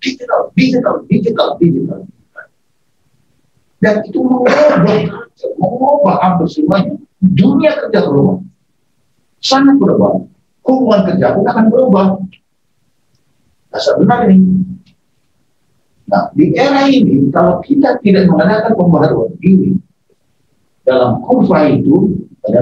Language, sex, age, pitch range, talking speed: Indonesian, male, 50-69, 150-245 Hz, 95 wpm